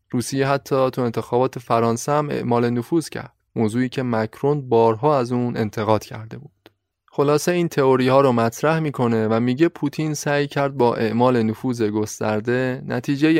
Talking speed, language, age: 155 wpm, Persian, 20-39